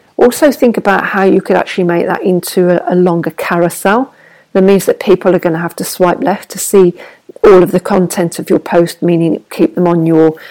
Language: English